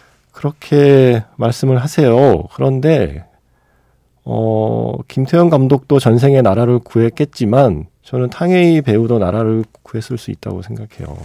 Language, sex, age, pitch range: Korean, male, 40-59, 95-130 Hz